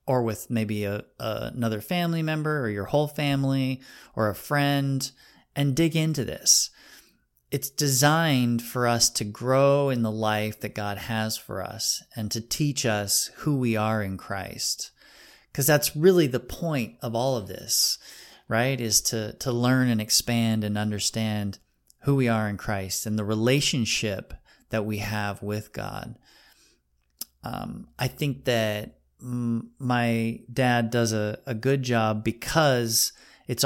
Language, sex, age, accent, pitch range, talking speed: English, male, 30-49, American, 105-135 Hz, 150 wpm